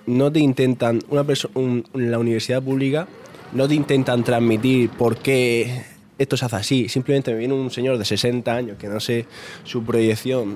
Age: 20-39